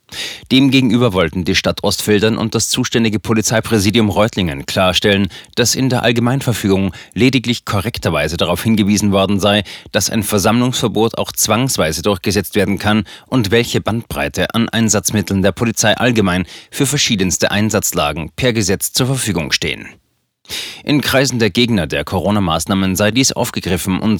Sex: male